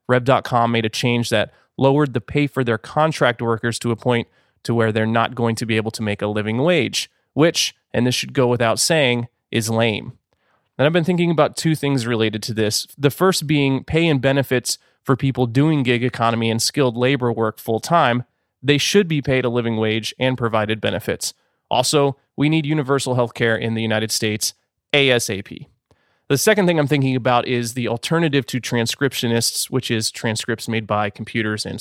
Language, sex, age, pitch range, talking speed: English, male, 30-49, 115-140 Hz, 195 wpm